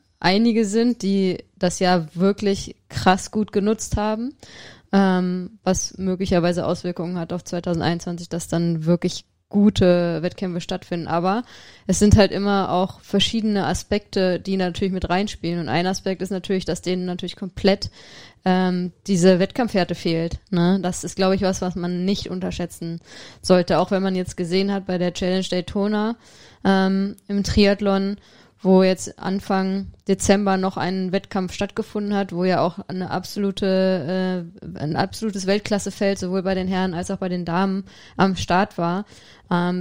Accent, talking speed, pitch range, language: German, 155 wpm, 180-195 Hz, German